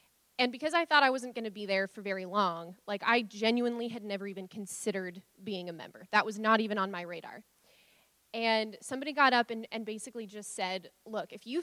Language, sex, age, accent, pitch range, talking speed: English, female, 20-39, American, 200-245 Hz, 215 wpm